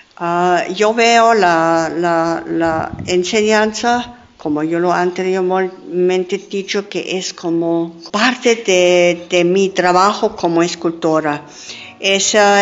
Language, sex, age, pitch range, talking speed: Spanish, female, 50-69, 175-215 Hz, 115 wpm